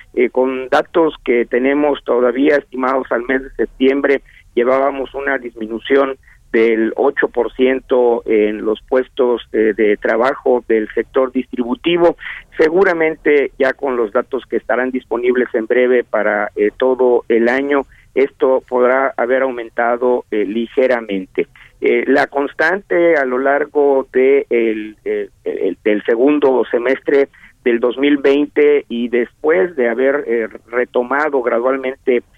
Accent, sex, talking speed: Mexican, male, 125 wpm